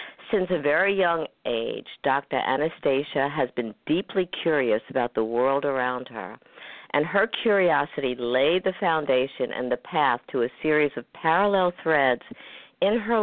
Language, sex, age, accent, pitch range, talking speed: English, female, 50-69, American, 140-180 Hz, 150 wpm